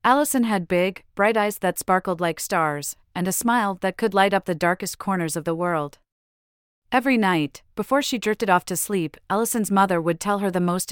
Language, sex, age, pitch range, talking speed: English, female, 30-49, 165-210 Hz, 205 wpm